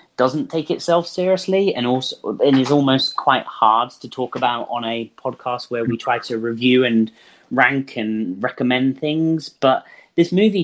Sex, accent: male, British